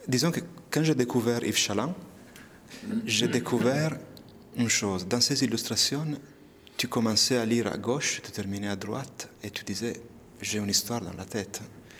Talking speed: 165 wpm